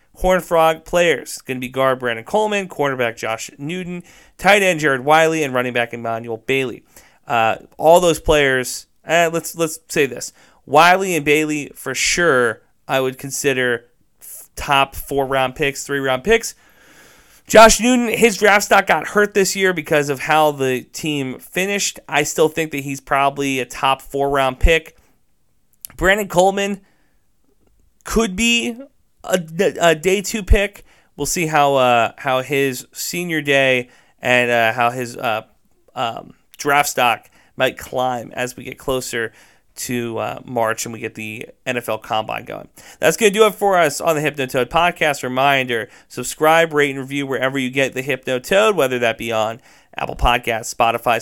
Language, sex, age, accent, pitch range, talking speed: English, male, 30-49, American, 130-165 Hz, 160 wpm